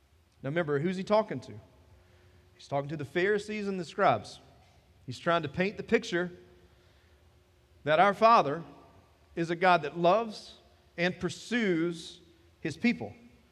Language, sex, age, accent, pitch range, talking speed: English, male, 40-59, American, 140-190 Hz, 140 wpm